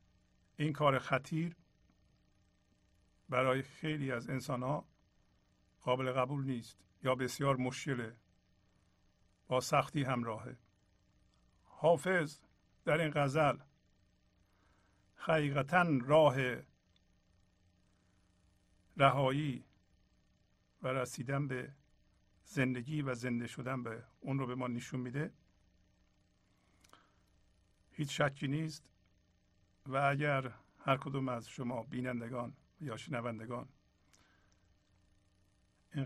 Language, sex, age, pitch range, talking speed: Persian, male, 50-69, 90-135 Hz, 85 wpm